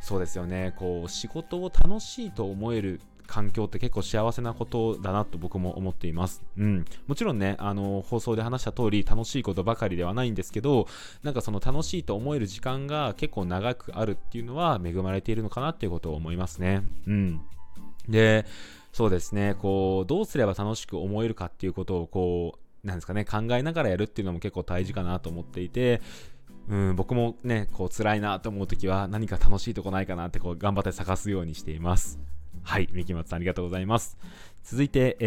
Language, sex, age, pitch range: Japanese, male, 20-39, 90-110 Hz